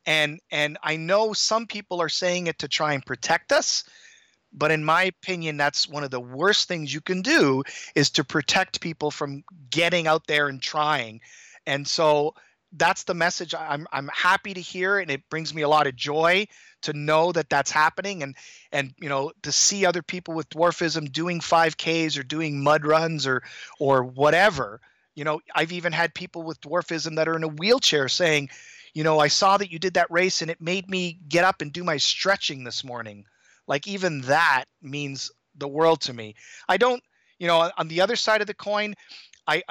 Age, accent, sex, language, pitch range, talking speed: 30-49, American, male, English, 150-185 Hz, 200 wpm